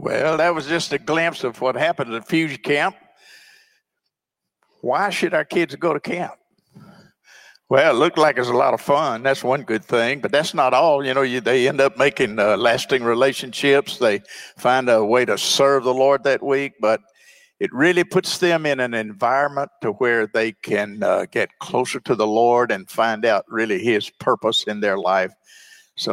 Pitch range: 125-160 Hz